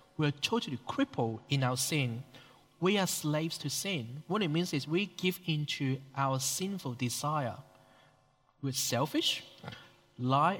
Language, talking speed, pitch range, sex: English, 145 wpm, 130-165 Hz, male